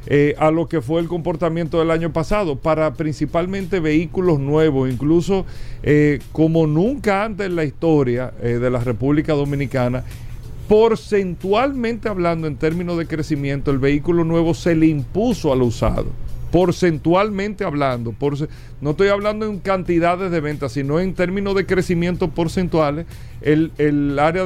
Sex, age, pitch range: male, 50-69, 145-185 Hz